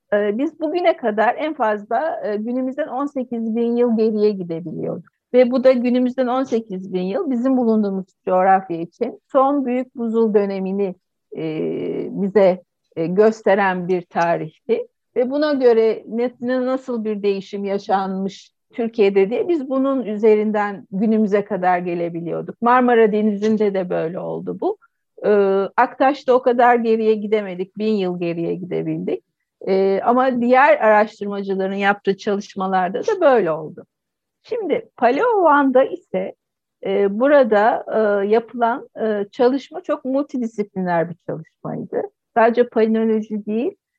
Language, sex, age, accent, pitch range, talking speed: Turkish, female, 60-79, native, 195-255 Hz, 115 wpm